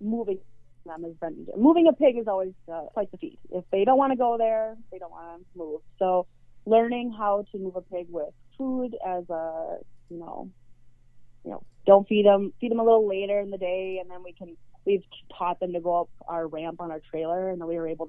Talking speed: 240 wpm